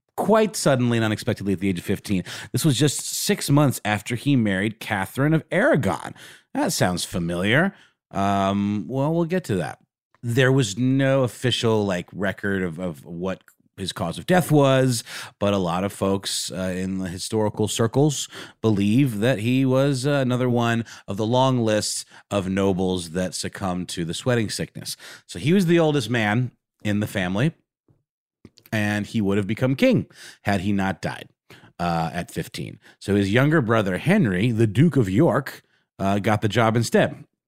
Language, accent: English, American